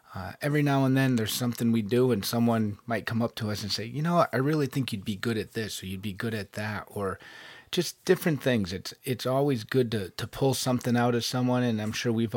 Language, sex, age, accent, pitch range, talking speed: English, male, 30-49, American, 110-125 Hz, 260 wpm